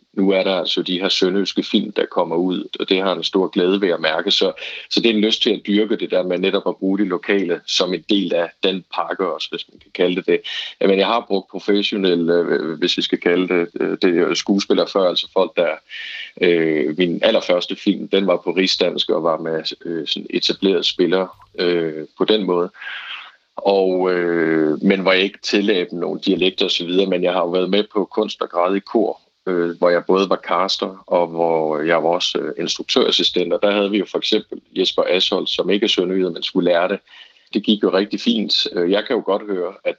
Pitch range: 85-100 Hz